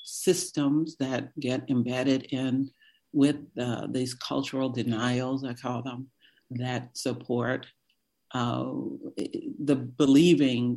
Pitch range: 125-145 Hz